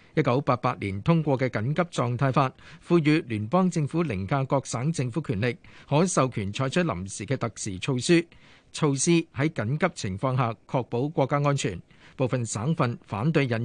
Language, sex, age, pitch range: Chinese, male, 50-69, 125-170 Hz